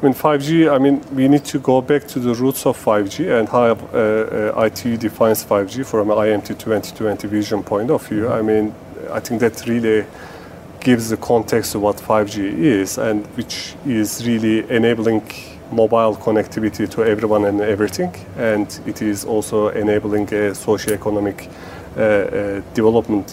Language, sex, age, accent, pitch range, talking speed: English, male, 30-49, Turkish, 105-120 Hz, 160 wpm